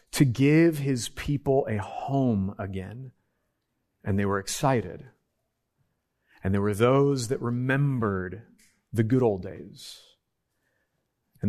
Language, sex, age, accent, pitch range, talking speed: English, male, 30-49, American, 110-160 Hz, 115 wpm